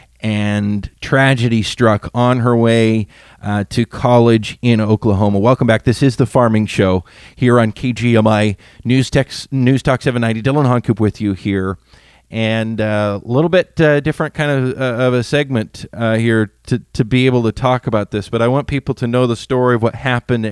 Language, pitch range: English, 110-135 Hz